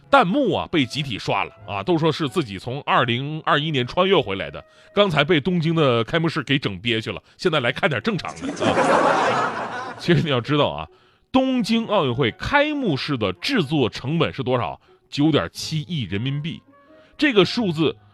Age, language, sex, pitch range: 20-39, Chinese, male, 130-200 Hz